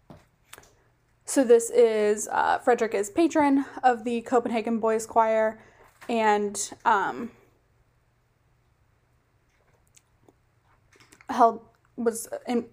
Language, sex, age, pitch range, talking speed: English, female, 20-39, 205-255 Hz, 75 wpm